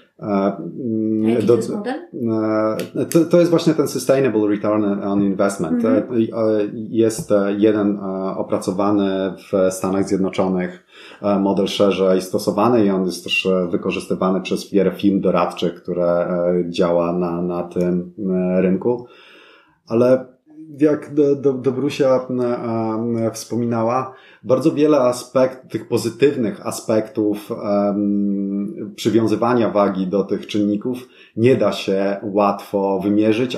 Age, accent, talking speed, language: 30-49, native, 95 wpm, Polish